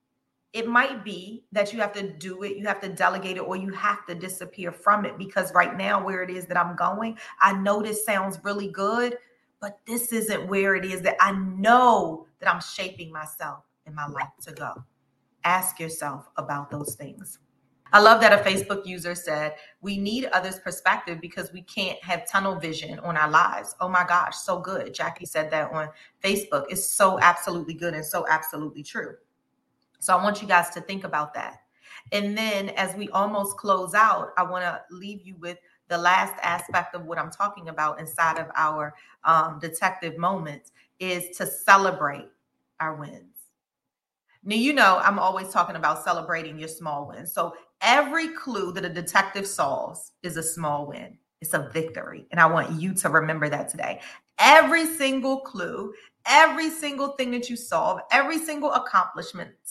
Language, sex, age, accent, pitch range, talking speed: English, female, 30-49, American, 165-205 Hz, 185 wpm